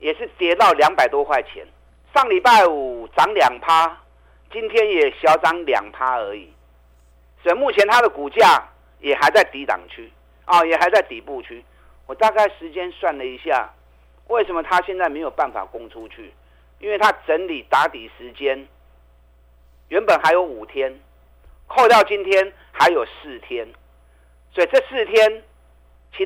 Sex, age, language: male, 50-69, Chinese